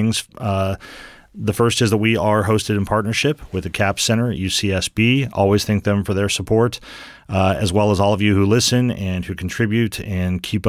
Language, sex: English, male